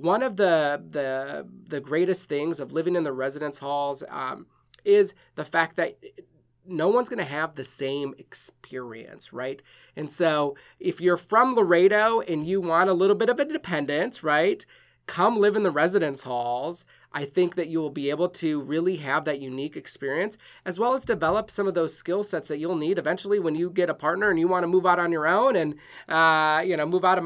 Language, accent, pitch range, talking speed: English, American, 145-200 Hz, 210 wpm